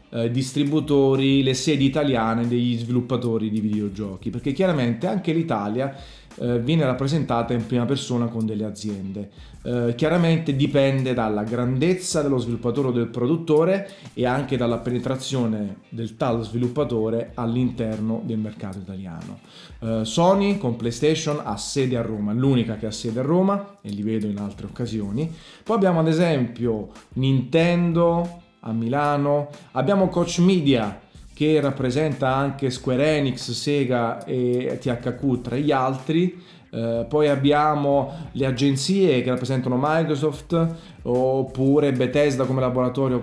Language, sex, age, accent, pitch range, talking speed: Italian, male, 30-49, native, 115-155 Hz, 130 wpm